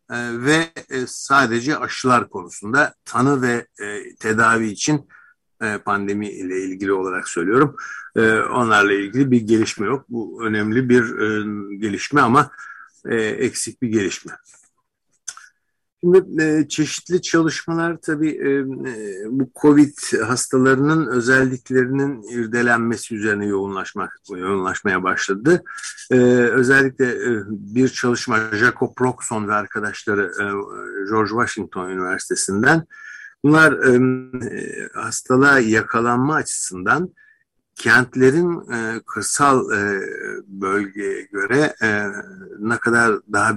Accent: native